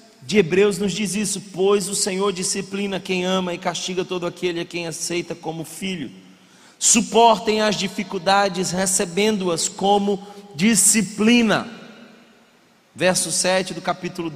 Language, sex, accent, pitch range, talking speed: Portuguese, male, Brazilian, 160-205 Hz, 125 wpm